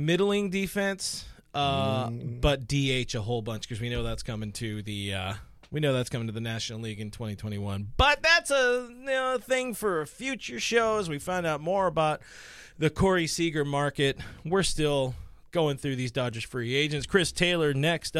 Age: 30-49